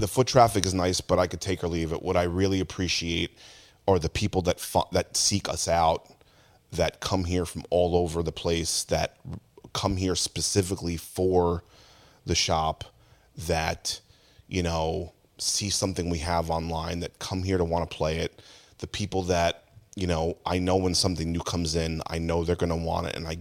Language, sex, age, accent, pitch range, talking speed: English, male, 30-49, American, 85-105 Hz, 195 wpm